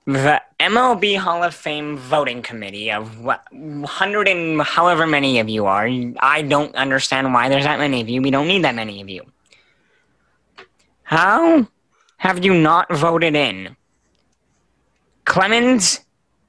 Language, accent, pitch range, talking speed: English, American, 135-190 Hz, 140 wpm